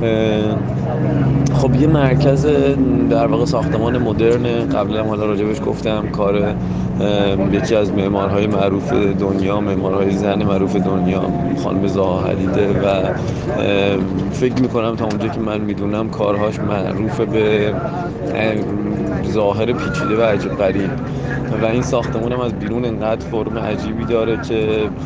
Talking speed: 120 wpm